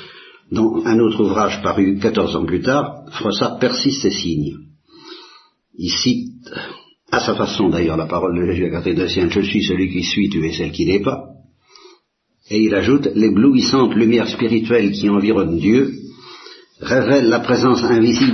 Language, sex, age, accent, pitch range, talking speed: Italian, male, 60-79, French, 100-140 Hz, 160 wpm